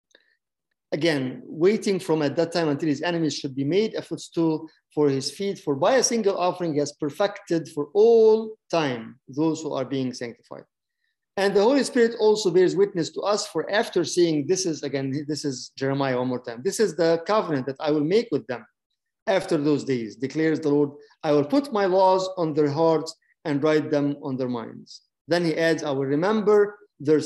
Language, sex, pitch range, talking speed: English, male, 145-180 Hz, 200 wpm